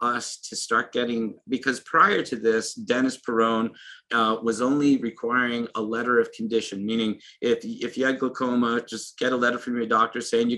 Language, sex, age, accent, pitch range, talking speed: English, male, 40-59, American, 110-125 Hz, 185 wpm